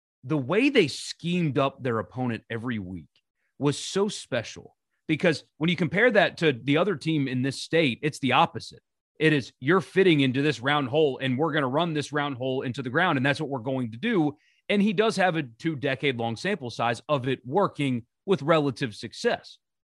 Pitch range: 135-185 Hz